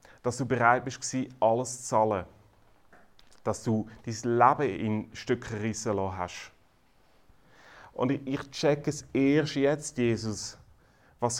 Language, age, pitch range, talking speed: German, 30-49, 105-125 Hz, 125 wpm